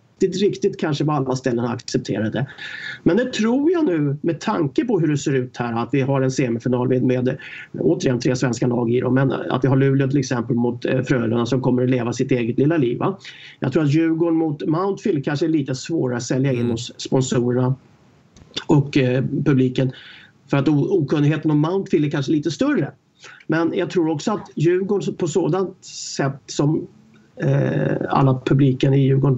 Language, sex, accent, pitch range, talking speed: English, male, Swedish, 130-155 Hz, 190 wpm